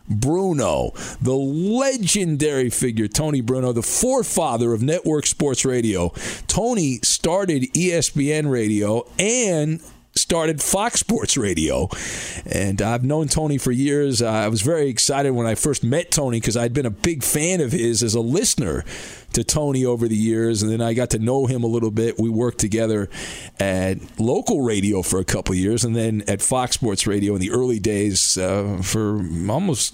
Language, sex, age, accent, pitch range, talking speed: English, male, 40-59, American, 115-160 Hz, 170 wpm